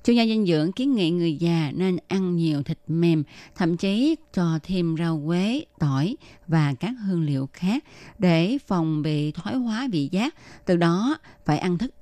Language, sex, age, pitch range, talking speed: Vietnamese, female, 20-39, 155-195 Hz, 185 wpm